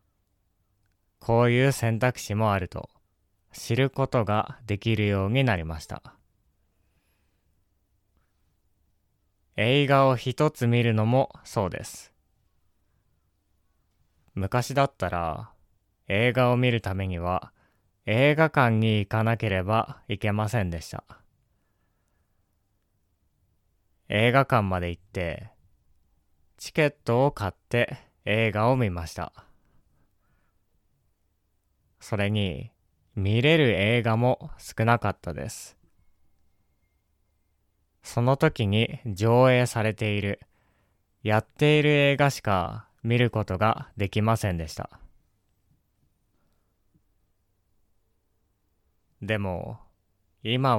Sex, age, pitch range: male, 20-39, 90-120 Hz